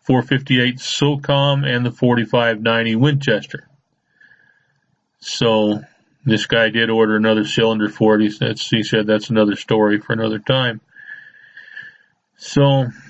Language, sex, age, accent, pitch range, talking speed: English, male, 40-59, American, 115-135 Hz, 110 wpm